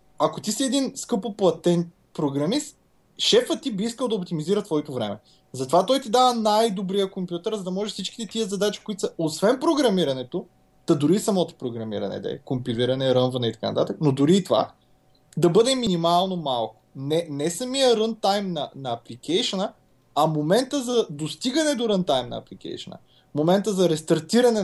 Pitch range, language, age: 160-230 Hz, Bulgarian, 20-39